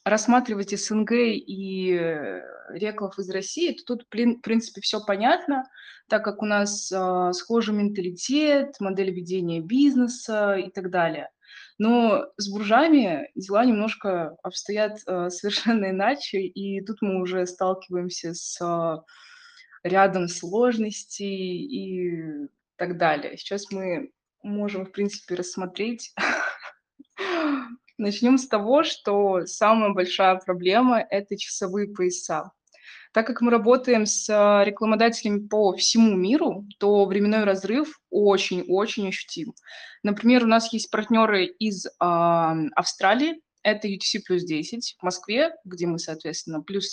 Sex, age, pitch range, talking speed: female, 20-39, 185-230 Hz, 115 wpm